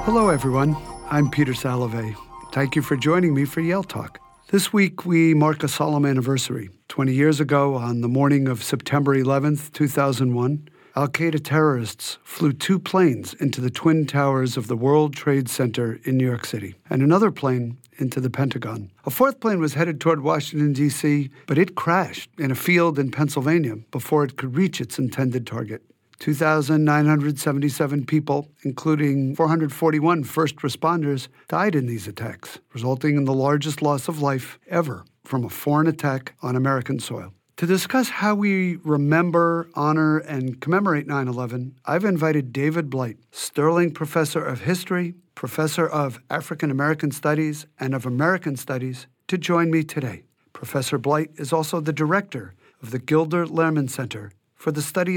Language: English